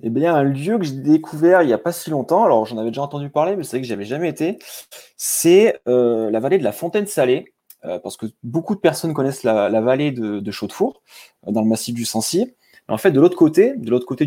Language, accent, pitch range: French, French, 115-155 Hz